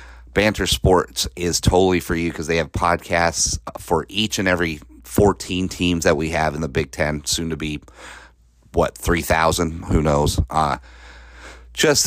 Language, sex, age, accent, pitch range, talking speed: English, male, 30-49, American, 75-95 Hz, 160 wpm